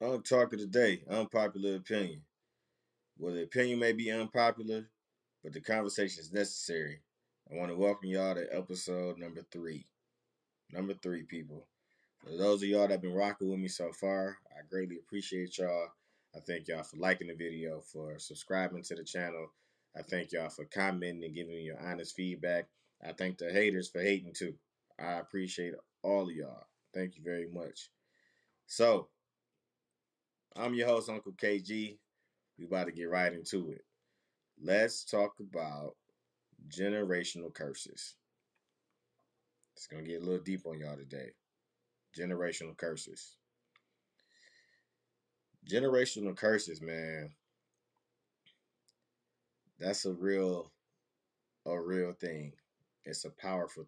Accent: American